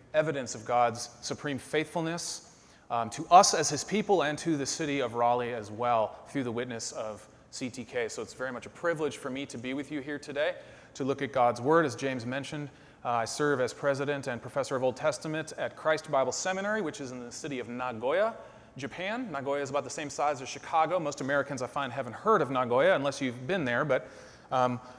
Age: 30-49